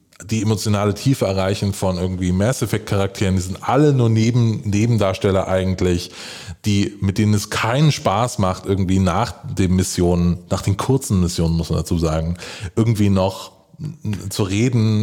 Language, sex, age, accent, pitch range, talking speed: German, male, 20-39, German, 100-125 Hz, 150 wpm